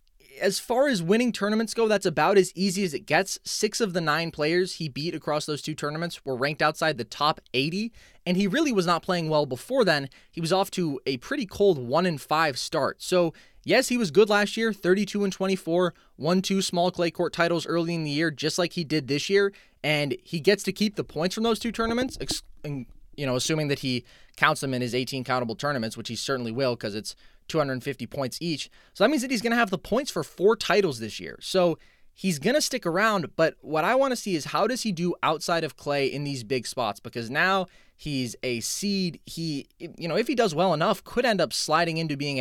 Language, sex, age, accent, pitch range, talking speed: English, male, 20-39, American, 140-195 Hz, 235 wpm